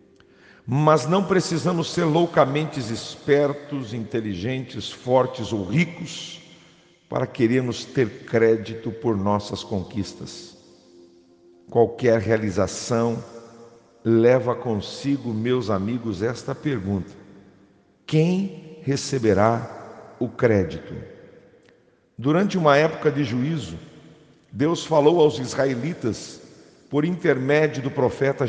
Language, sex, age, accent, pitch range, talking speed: English, male, 50-69, Brazilian, 110-145 Hz, 90 wpm